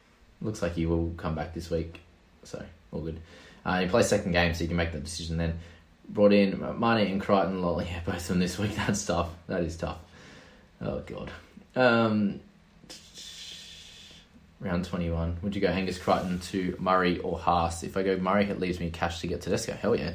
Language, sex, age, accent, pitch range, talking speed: English, male, 20-39, Australian, 85-105 Hz, 200 wpm